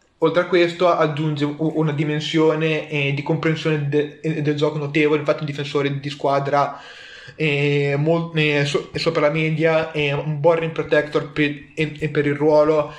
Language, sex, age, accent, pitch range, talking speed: Italian, male, 20-39, native, 145-160 Hz, 160 wpm